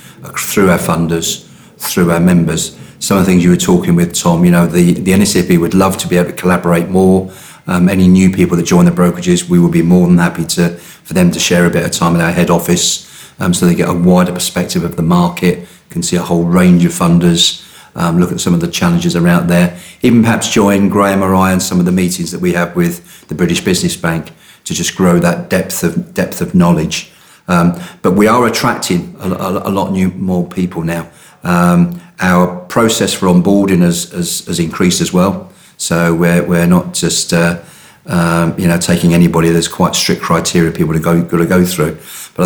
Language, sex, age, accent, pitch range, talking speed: English, male, 40-59, British, 85-95 Hz, 220 wpm